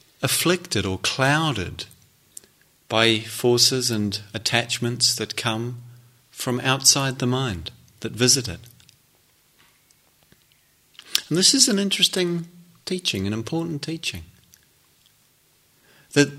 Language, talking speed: English, 95 wpm